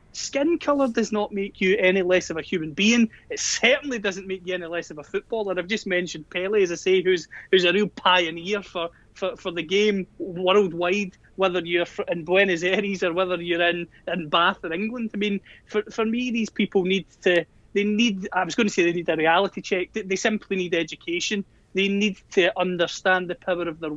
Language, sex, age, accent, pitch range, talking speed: English, male, 30-49, British, 175-210 Hz, 215 wpm